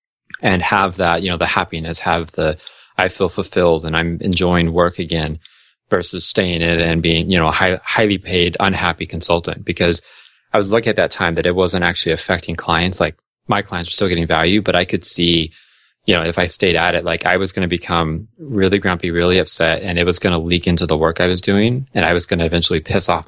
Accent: American